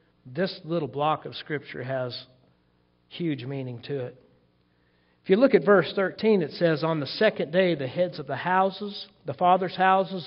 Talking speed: 175 wpm